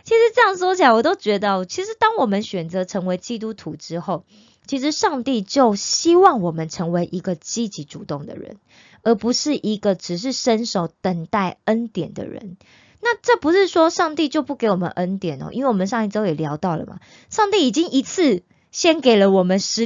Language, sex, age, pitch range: Korean, female, 20-39, 180-280 Hz